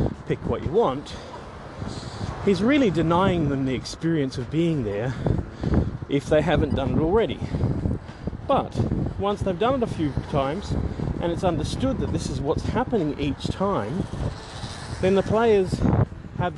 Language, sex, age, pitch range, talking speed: English, male, 30-49, 130-175 Hz, 150 wpm